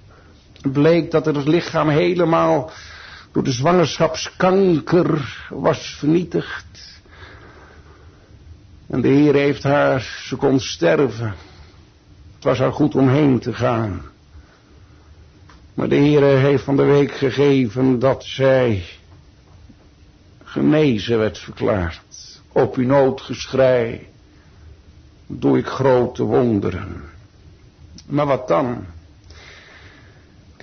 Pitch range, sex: 90-150 Hz, male